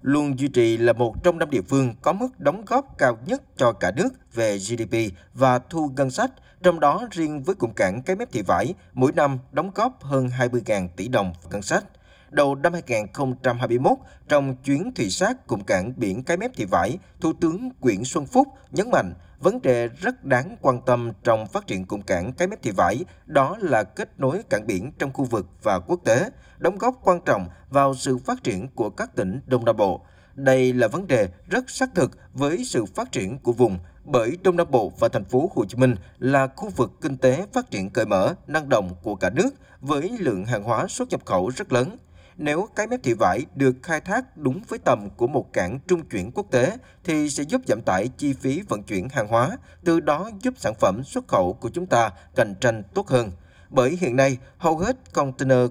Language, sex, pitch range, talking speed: Vietnamese, male, 120-175 Hz, 220 wpm